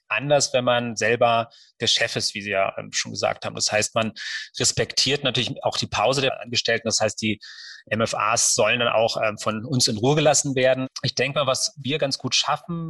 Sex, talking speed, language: male, 205 wpm, German